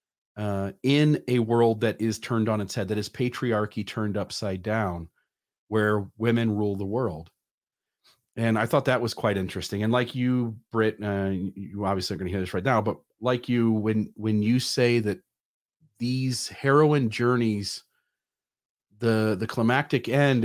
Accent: American